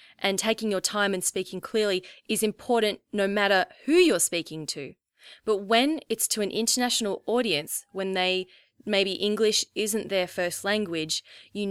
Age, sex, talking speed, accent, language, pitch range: 20-39, female, 160 wpm, Australian, English, 175-215 Hz